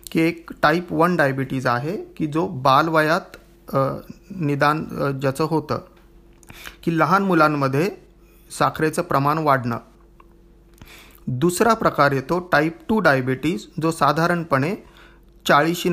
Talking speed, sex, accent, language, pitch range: 105 wpm, male, native, Marathi, 140-175 Hz